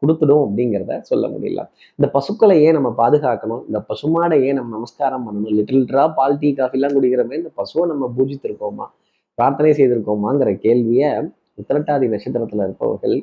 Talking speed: 130 wpm